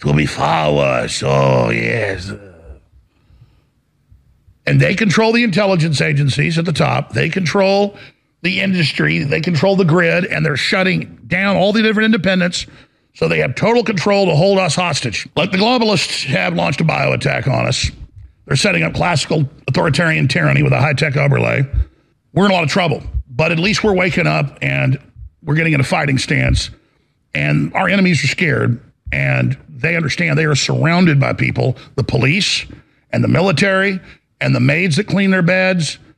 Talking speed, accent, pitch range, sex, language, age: 170 wpm, American, 140-195 Hz, male, English, 50-69